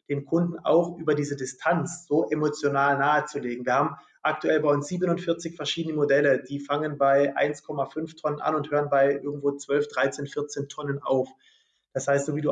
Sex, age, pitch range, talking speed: male, 20-39, 140-165 Hz, 175 wpm